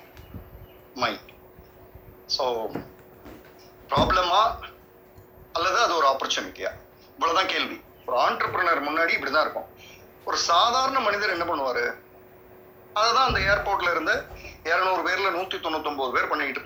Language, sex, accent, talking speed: Tamil, male, native, 110 wpm